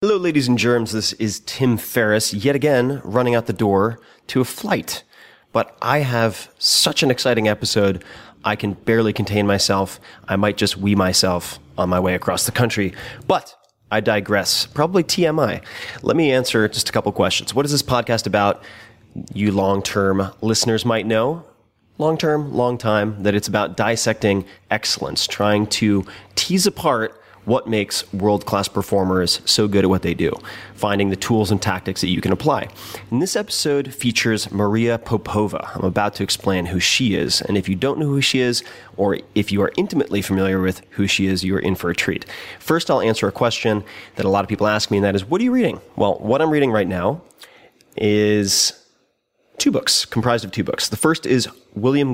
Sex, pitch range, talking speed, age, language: male, 100-120 Hz, 190 wpm, 30-49, English